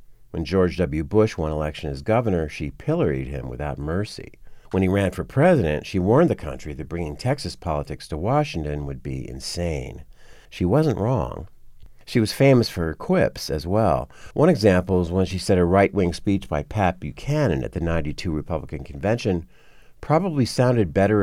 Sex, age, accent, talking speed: male, 50-69, American, 175 wpm